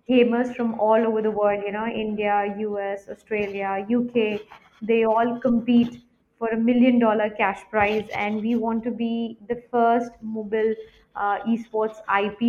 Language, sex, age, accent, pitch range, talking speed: English, female, 20-39, Indian, 210-235 Hz, 155 wpm